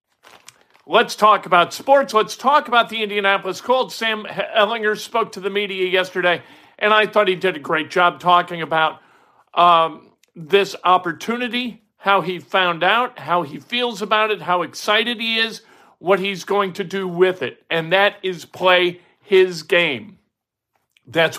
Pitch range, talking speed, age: 165-205 Hz, 160 wpm, 50-69